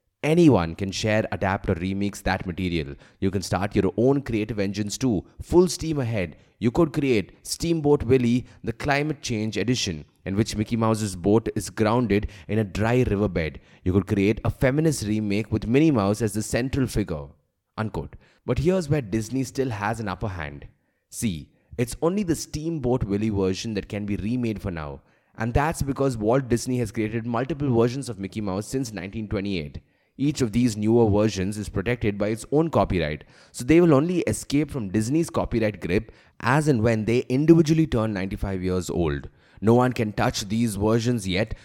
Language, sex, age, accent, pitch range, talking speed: English, male, 20-39, Indian, 100-125 Hz, 180 wpm